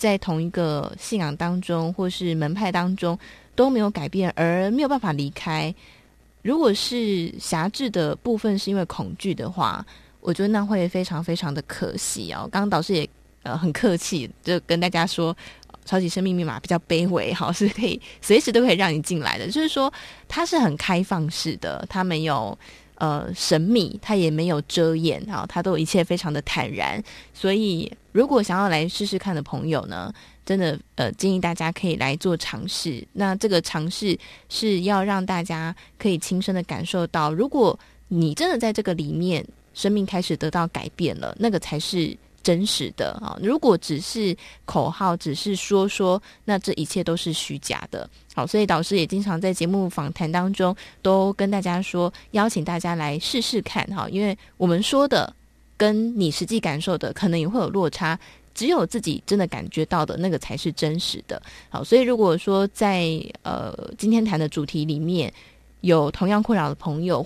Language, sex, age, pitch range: Chinese, female, 20-39, 165-200 Hz